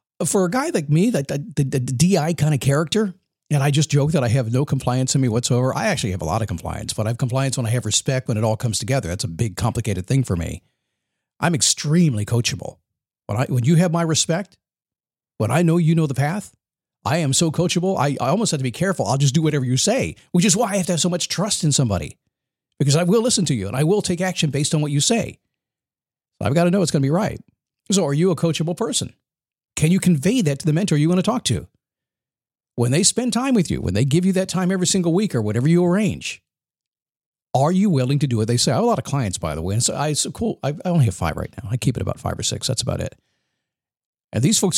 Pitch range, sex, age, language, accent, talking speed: 125-175 Hz, male, 50-69, English, American, 270 wpm